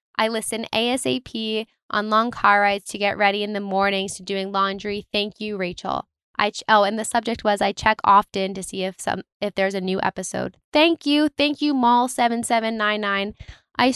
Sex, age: female, 10-29